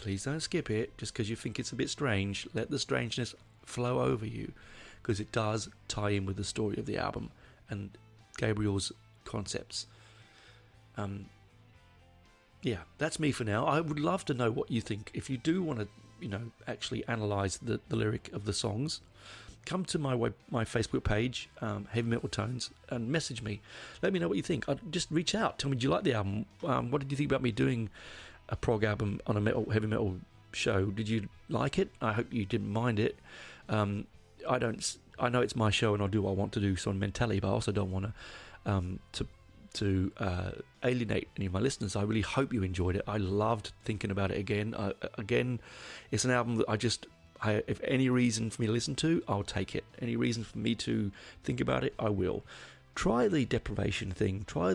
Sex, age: male, 40-59